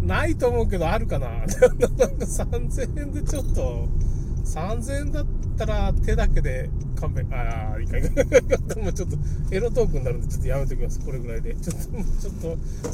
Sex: male